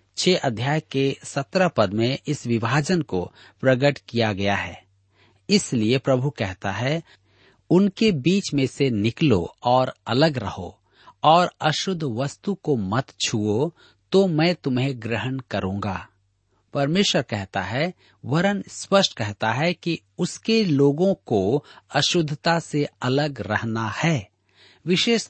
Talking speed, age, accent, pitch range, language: 125 wpm, 50-69, native, 105-160 Hz, Hindi